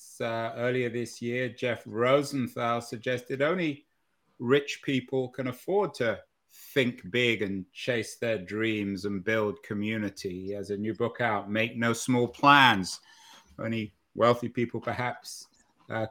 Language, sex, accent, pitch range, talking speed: English, male, British, 115-140 Hz, 140 wpm